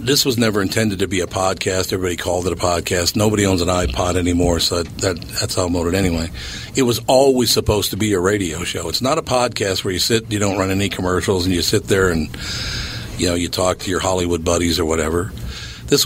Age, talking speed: 50-69, 230 wpm